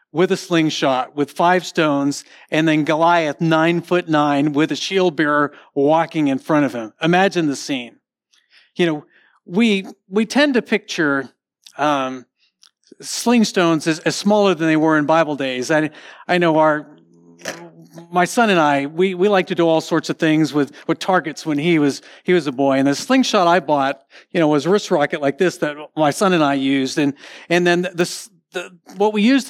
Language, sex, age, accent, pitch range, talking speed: English, male, 50-69, American, 150-185 Hz, 200 wpm